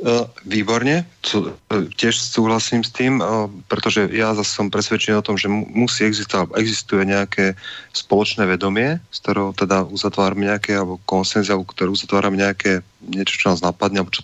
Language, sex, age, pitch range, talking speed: Slovak, male, 30-49, 95-110 Hz, 170 wpm